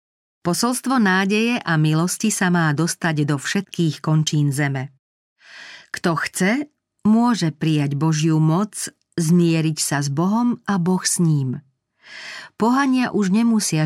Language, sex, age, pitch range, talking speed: Slovak, female, 40-59, 150-195 Hz, 120 wpm